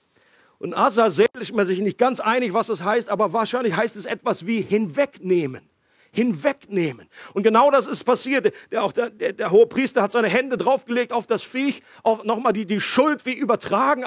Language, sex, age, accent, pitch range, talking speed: German, male, 50-69, German, 215-275 Hz, 195 wpm